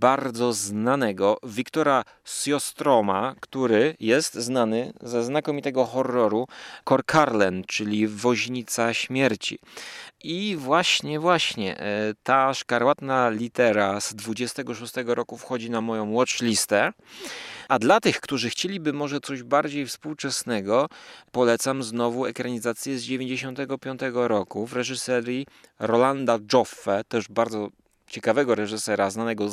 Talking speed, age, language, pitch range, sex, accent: 105 wpm, 30-49, Polish, 105-130 Hz, male, native